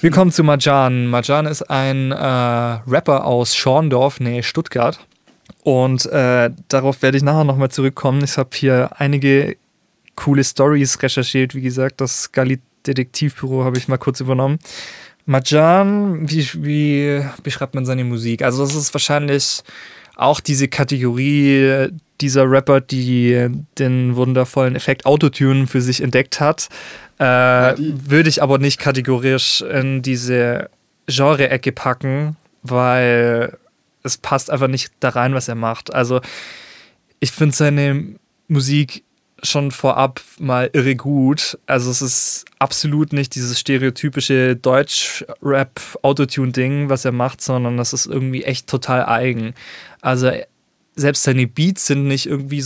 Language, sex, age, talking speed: German, male, 20-39, 135 wpm